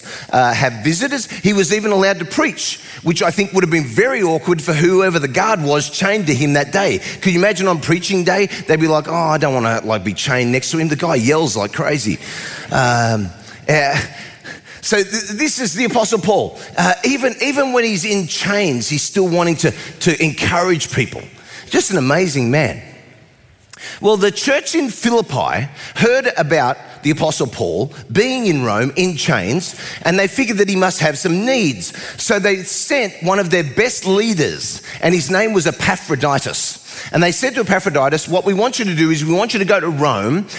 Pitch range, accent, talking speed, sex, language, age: 150-200 Hz, Australian, 195 wpm, male, English, 30-49